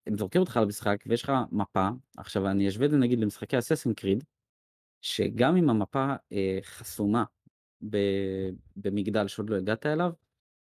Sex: male